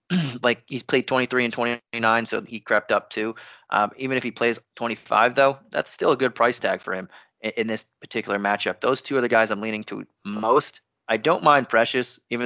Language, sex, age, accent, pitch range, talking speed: English, male, 30-49, American, 110-130 Hz, 215 wpm